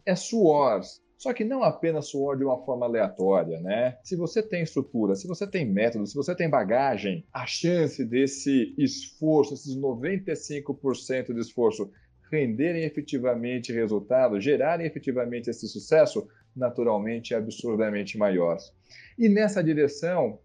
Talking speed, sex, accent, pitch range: 135 wpm, male, Brazilian, 120-175 Hz